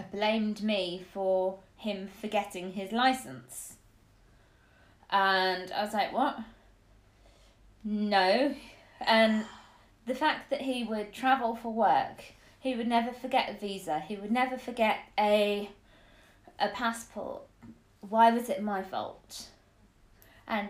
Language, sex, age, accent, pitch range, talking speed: English, female, 20-39, British, 185-230 Hz, 120 wpm